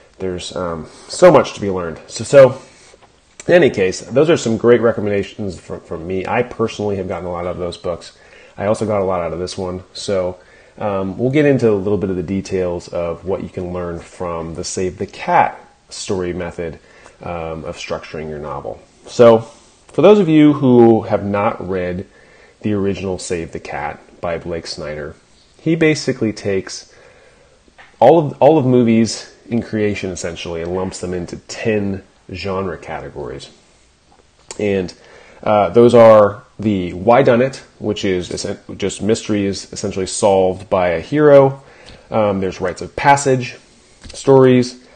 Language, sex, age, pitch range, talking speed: English, male, 30-49, 90-120 Hz, 165 wpm